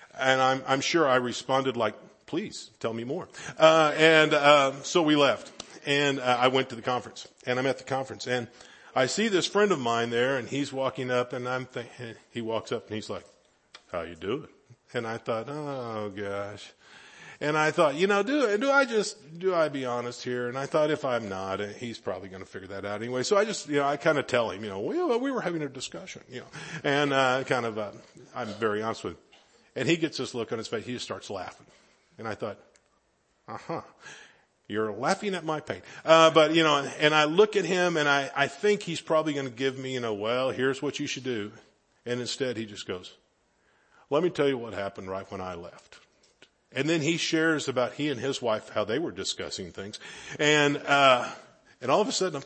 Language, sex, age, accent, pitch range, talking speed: English, male, 50-69, American, 125-160 Hz, 230 wpm